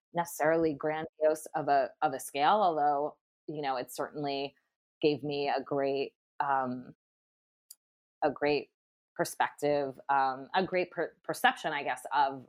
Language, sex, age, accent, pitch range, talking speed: English, female, 20-39, American, 135-165 Hz, 135 wpm